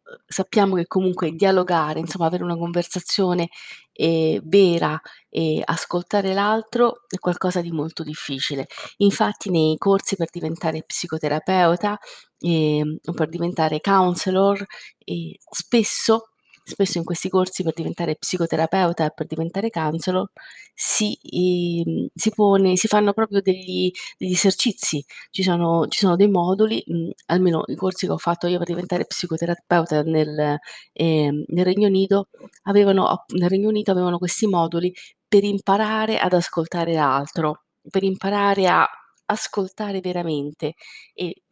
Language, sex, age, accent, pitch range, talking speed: Italian, female, 30-49, native, 165-200 Hz, 130 wpm